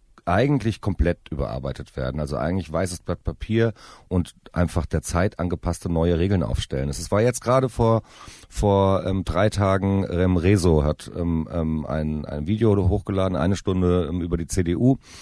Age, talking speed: 40-59, 155 wpm